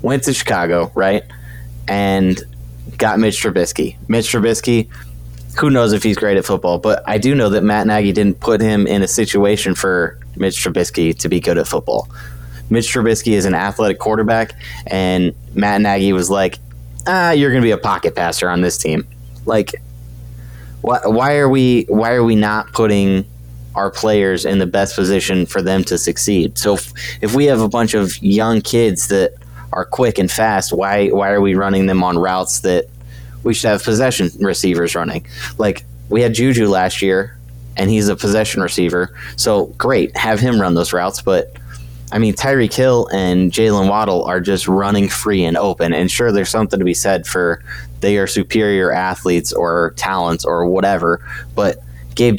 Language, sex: English, male